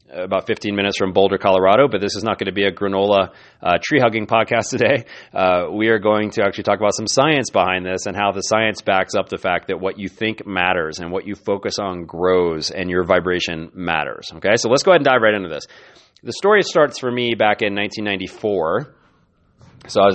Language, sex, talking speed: English, male, 215 wpm